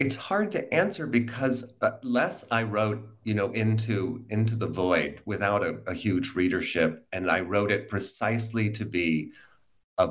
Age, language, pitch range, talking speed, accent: 40-59, English, 90-110 Hz, 165 wpm, American